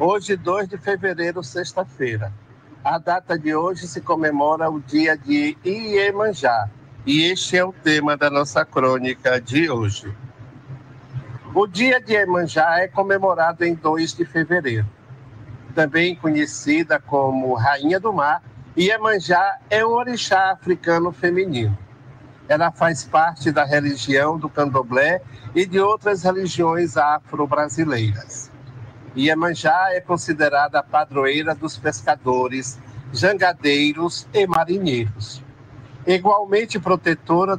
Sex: male